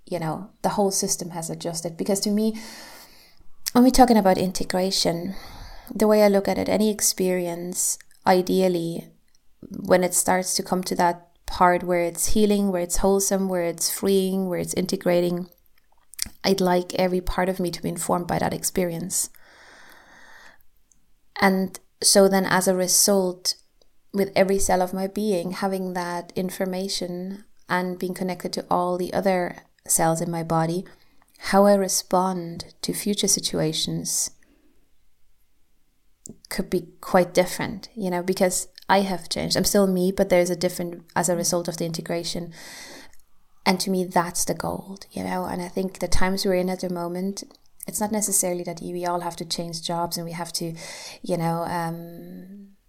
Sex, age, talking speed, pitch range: female, 20-39, 165 wpm, 175-195 Hz